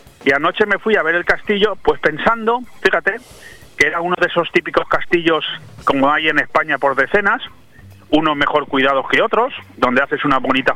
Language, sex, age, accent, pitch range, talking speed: Spanish, male, 30-49, Spanish, 120-160 Hz, 185 wpm